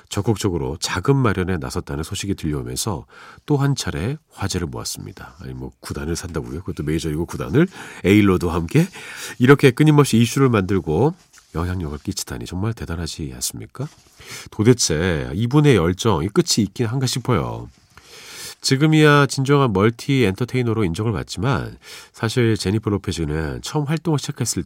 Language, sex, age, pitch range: Korean, male, 40-59, 95-140 Hz